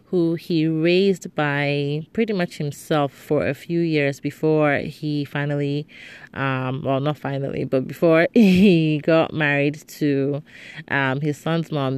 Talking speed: 140 wpm